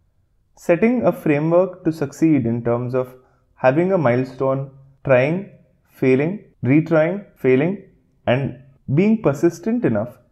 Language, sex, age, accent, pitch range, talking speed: English, male, 20-39, Indian, 120-165 Hz, 110 wpm